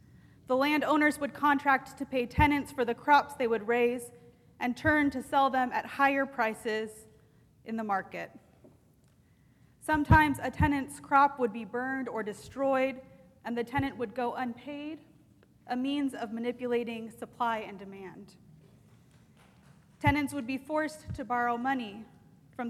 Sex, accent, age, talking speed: female, American, 30-49, 145 wpm